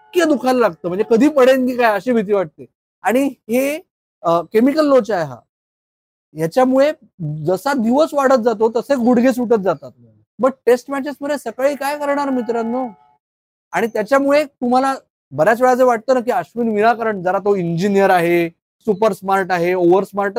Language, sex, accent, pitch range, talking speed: Marathi, male, native, 200-255 Hz, 95 wpm